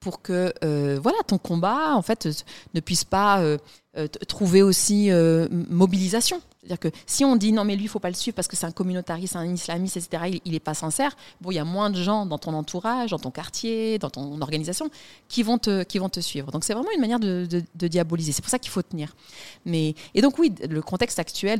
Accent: French